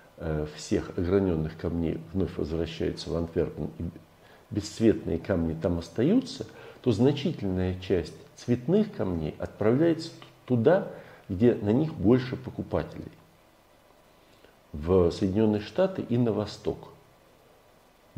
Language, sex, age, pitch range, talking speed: Russian, male, 50-69, 85-125 Hz, 100 wpm